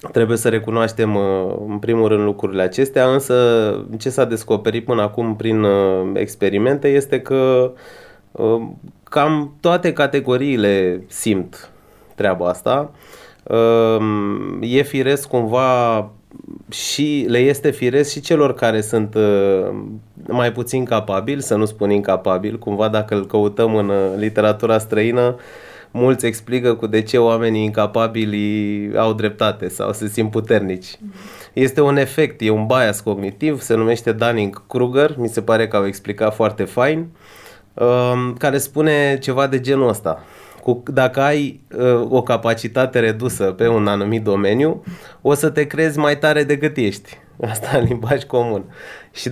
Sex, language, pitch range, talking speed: male, Romanian, 105-135 Hz, 130 wpm